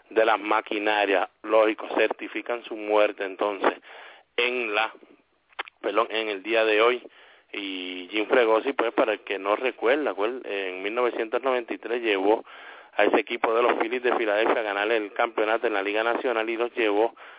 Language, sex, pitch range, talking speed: English, male, 105-120 Hz, 165 wpm